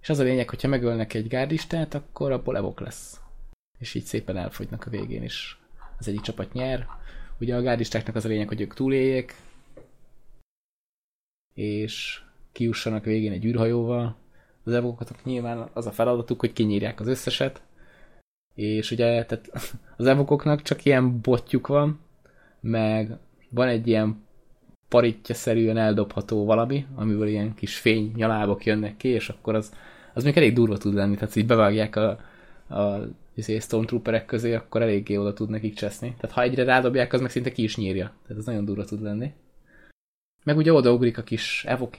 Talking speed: 165 wpm